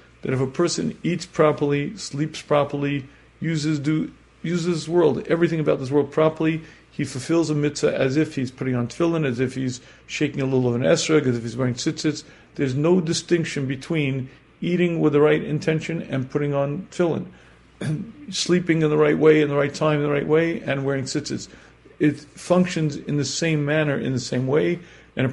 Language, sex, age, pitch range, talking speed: English, male, 40-59, 135-165 Hz, 195 wpm